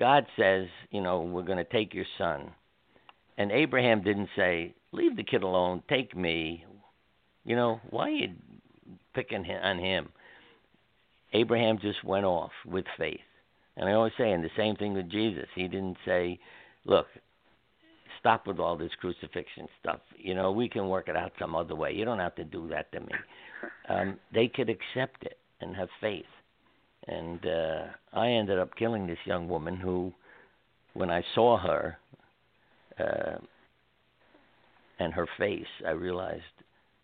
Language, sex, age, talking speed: English, male, 60-79, 160 wpm